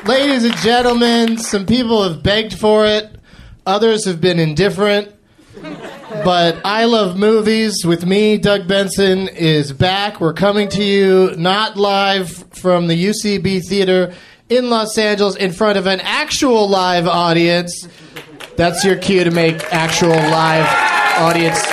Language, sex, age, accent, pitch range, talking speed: English, male, 30-49, American, 150-190 Hz, 140 wpm